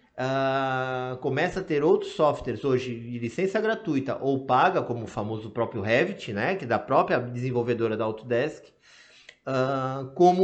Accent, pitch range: Brazilian, 120-170 Hz